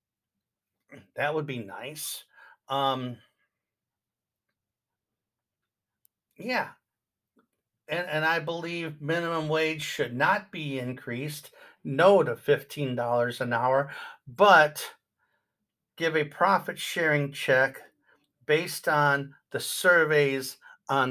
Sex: male